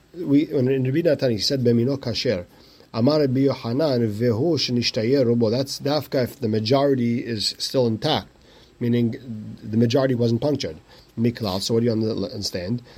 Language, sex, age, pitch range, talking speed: English, male, 40-59, 115-140 Hz, 140 wpm